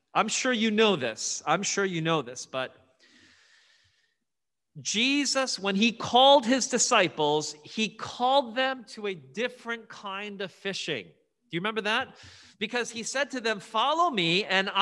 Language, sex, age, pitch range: English, male, 40-59, 165-235 Hz